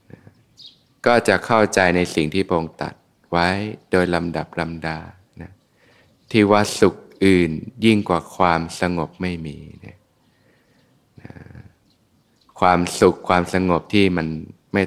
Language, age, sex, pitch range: Thai, 20-39, male, 85-100 Hz